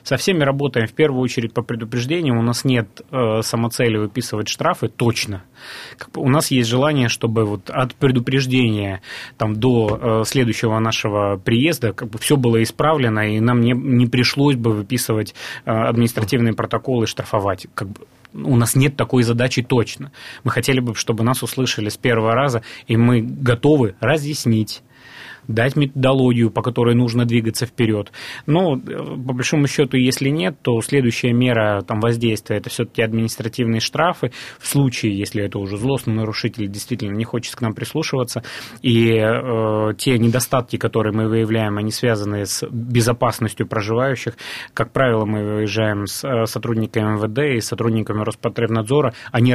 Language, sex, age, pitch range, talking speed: Russian, male, 30-49, 110-130 Hz, 150 wpm